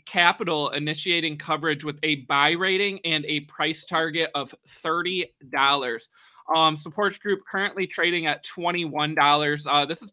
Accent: American